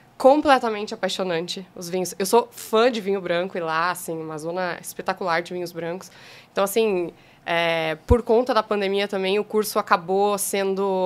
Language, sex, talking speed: Portuguese, female, 170 wpm